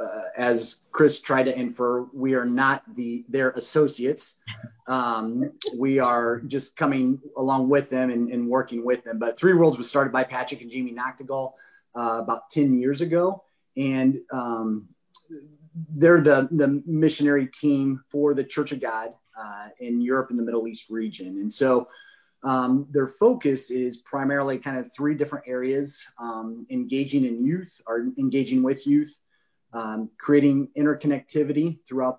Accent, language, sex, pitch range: American, English, male, 115-140 Hz